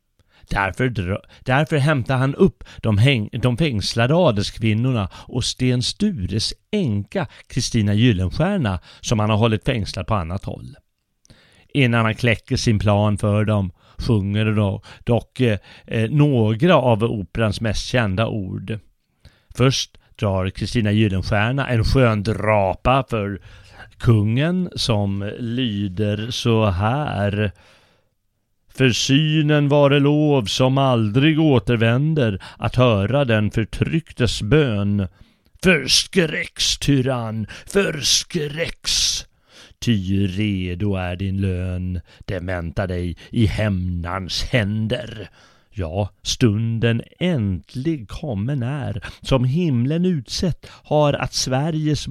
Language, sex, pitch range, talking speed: Swedish, male, 100-130 Hz, 105 wpm